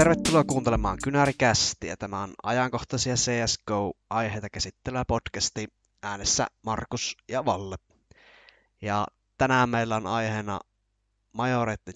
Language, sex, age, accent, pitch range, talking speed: Finnish, male, 20-39, native, 105-120 Hz, 105 wpm